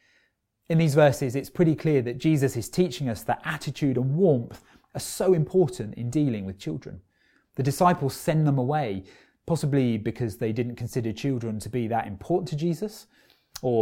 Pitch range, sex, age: 110-145 Hz, male, 30-49